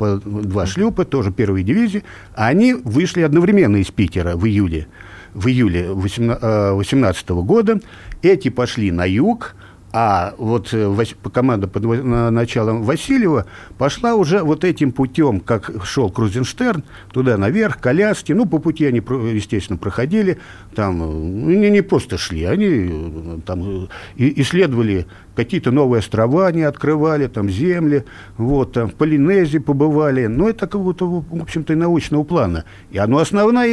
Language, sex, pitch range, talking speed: Russian, male, 100-155 Hz, 140 wpm